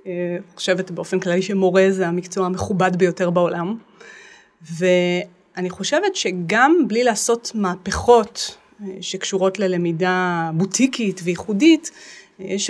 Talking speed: 95 wpm